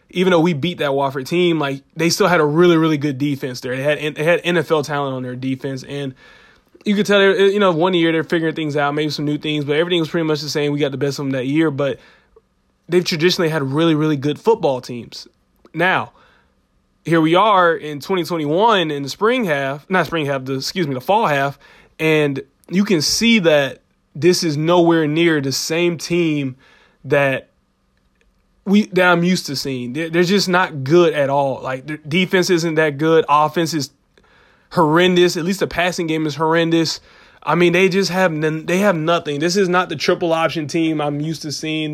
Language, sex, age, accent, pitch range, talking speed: English, male, 20-39, American, 145-175 Hz, 205 wpm